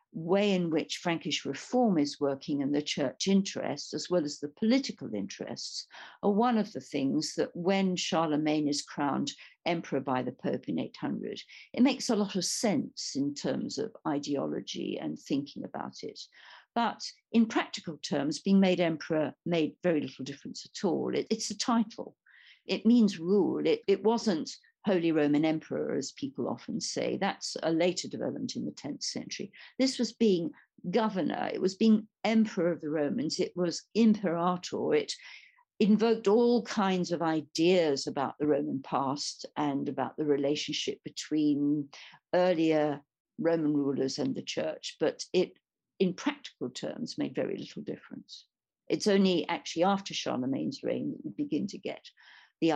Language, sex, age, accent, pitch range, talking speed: English, female, 50-69, British, 150-225 Hz, 160 wpm